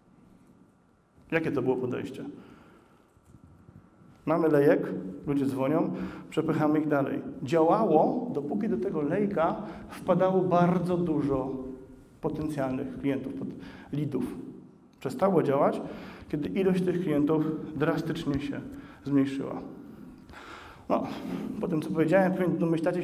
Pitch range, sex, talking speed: 140-170 Hz, male, 95 wpm